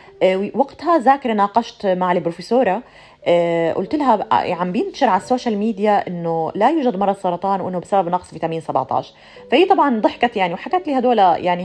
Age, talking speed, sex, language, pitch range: 30-49, 155 wpm, female, Arabic, 170-235 Hz